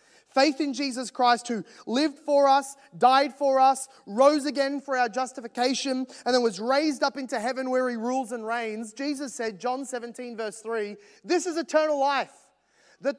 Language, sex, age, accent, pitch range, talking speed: English, male, 30-49, Australian, 240-285 Hz, 175 wpm